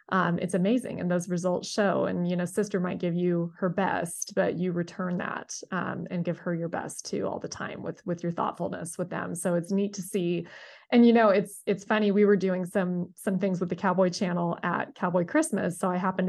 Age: 20-39